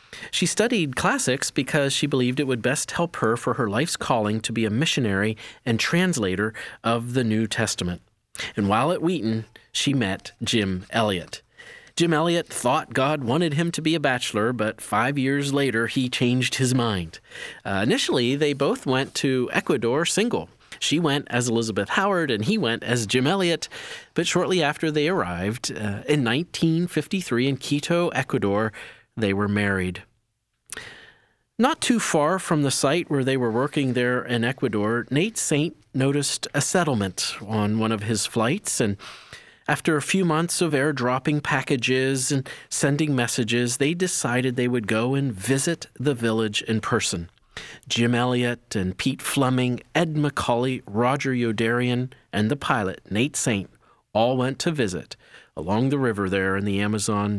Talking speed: 160 wpm